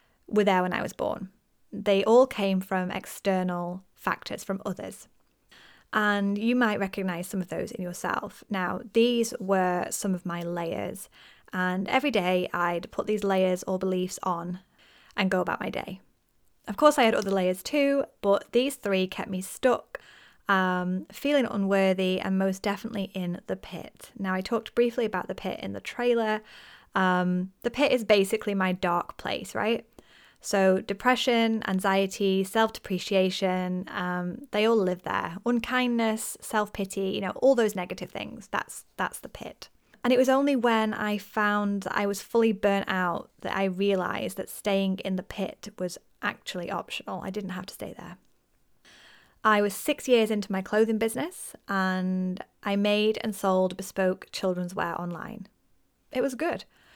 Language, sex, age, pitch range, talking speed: English, female, 20-39, 185-220 Hz, 165 wpm